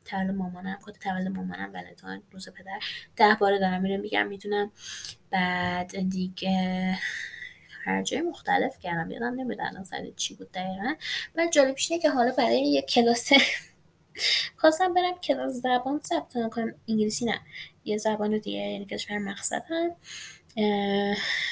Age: 10-29